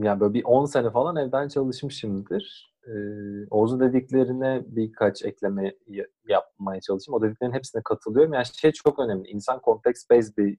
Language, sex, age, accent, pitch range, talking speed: Turkish, male, 30-49, native, 105-140 Hz, 155 wpm